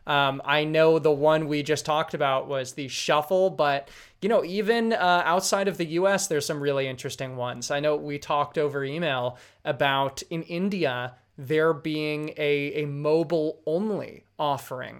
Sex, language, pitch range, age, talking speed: male, English, 140-165 Hz, 20-39, 170 wpm